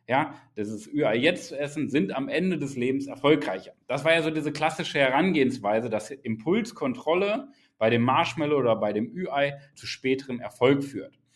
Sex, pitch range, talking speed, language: male, 125-170 Hz, 175 wpm, German